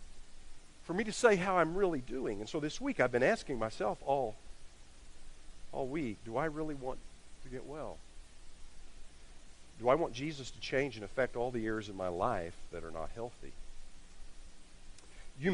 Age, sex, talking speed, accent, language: 50-69, male, 175 wpm, American, English